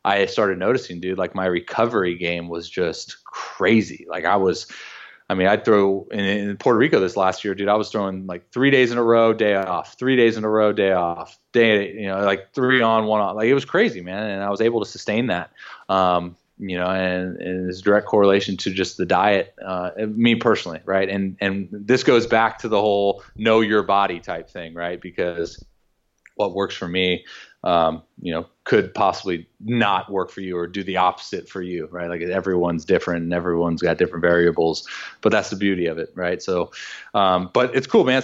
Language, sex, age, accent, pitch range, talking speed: English, male, 20-39, American, 90-110 Hz, 215 wpm